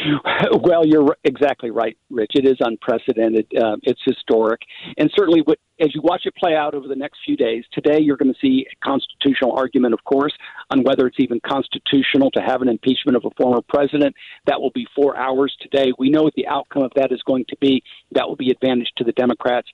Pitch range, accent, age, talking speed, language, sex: 125-155 Hz, American, 50-69, 215 wpm, English, male